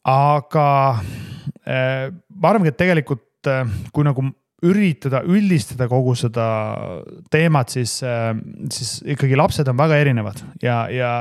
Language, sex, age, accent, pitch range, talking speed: English, male, 30-49, Finnish, 120-155 Hz, 130 wpm